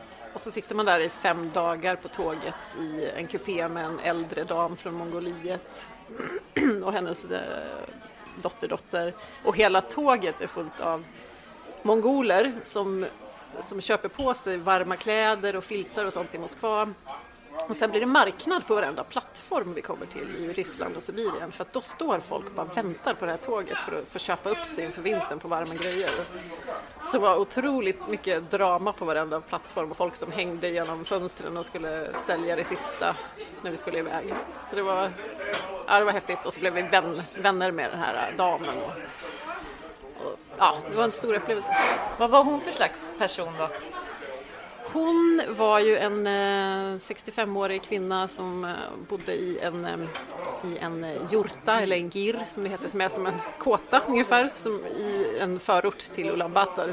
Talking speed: 175 wpm